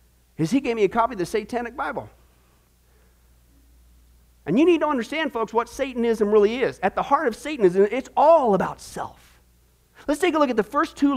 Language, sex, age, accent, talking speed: English, male, 40-59, American, 200 wpm